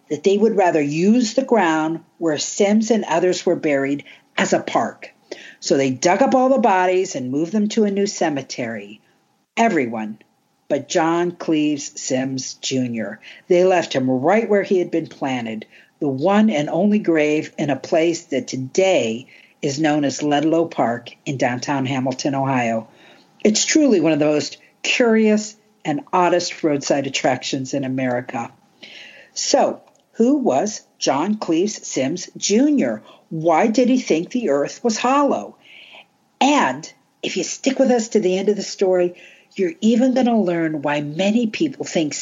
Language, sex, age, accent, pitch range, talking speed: English, female, 50-69, American, 145-220 Hz, 160 wpm